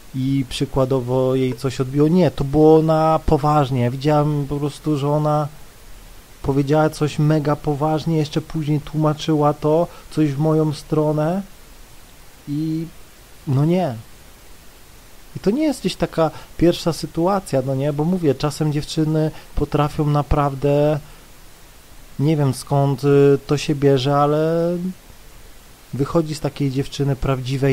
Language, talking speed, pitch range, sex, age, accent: Polish, 125 wpm, 140-160 Hz, male, 30-49, native